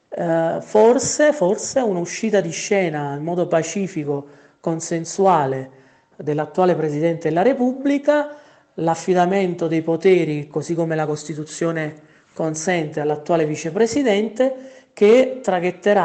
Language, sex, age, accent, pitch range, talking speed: Italian, male, 40-59, native, 150-195 Hz, 95 wpm